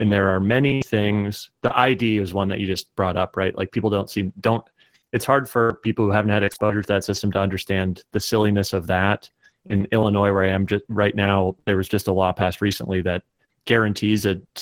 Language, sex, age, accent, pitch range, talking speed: English, male, 30-49, American, 100-115 Hz, 230 wpm